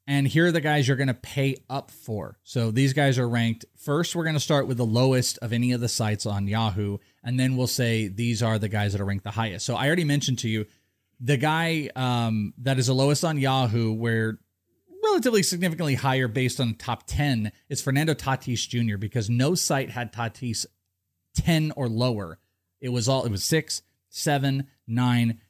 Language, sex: English, male